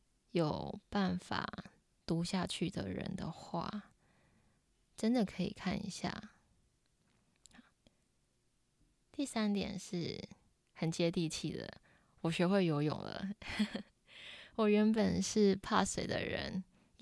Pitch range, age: 175-210 Hz, 20-39